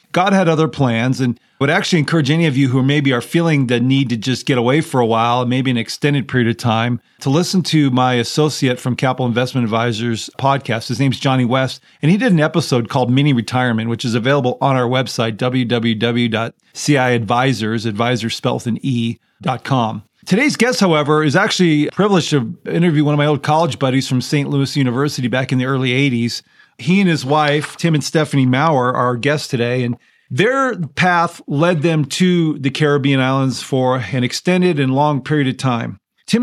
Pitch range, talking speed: 125-155 Hz, 195 wpm